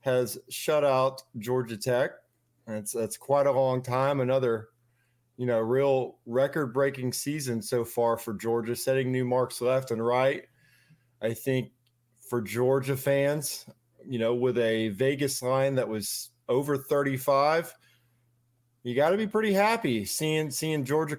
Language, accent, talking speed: English, American, 145 wpm